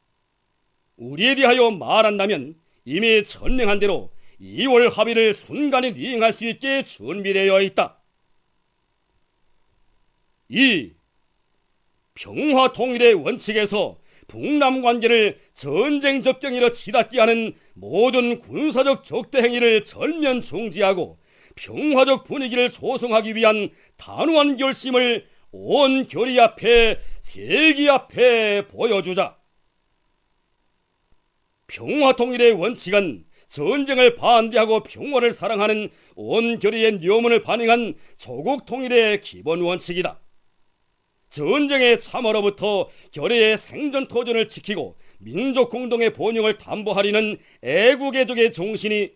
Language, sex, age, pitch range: Korean, male, 40-59, 210-260 Hz